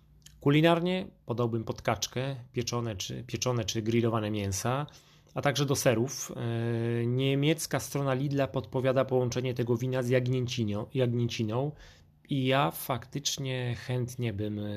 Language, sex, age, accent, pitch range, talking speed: Polish, male, 30-49, native, 105-130 Hz, 110 wpm